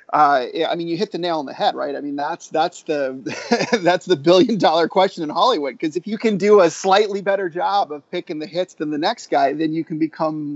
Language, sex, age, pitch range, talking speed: English, male, 30-49, 145-185 Hz, 245 wpm